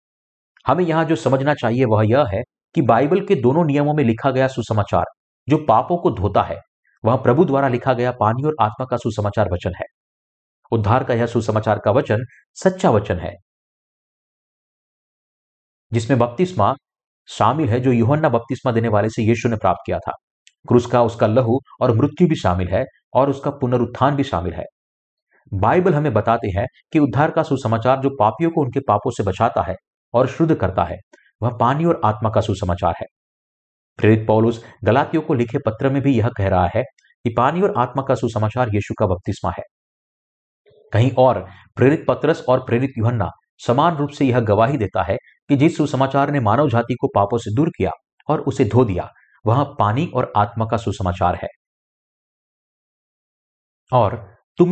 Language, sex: Hindi, male